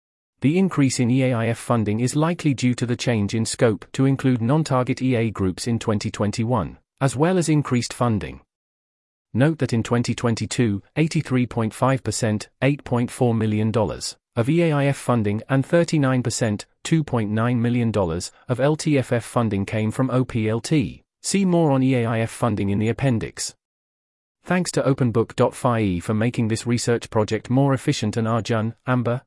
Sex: male